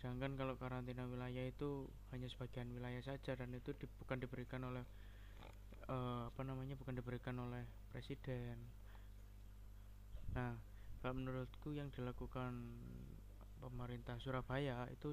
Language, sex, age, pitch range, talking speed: Indonesian, male, 20-39, 105-130 Hz, 115 wpm